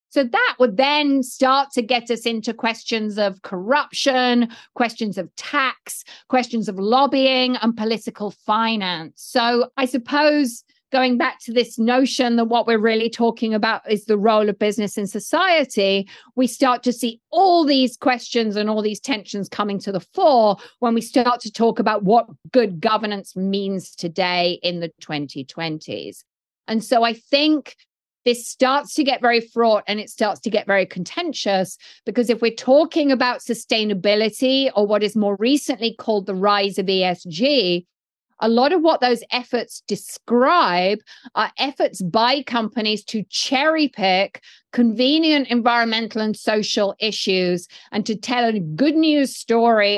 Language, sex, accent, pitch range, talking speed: English, female, British, 205-255 Hz, 155 wpm